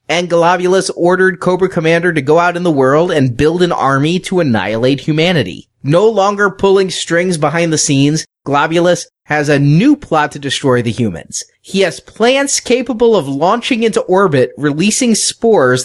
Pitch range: 140-185 Hz